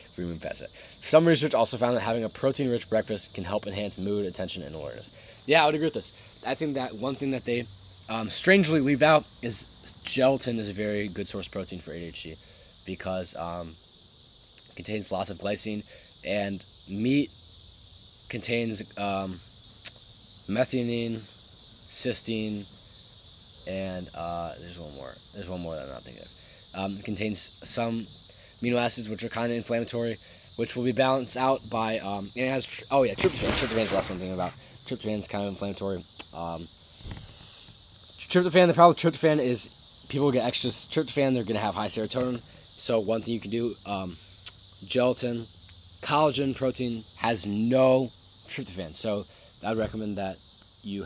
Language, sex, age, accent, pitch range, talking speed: English, male, 20-39, American, 95-120 Hz, 165 wpm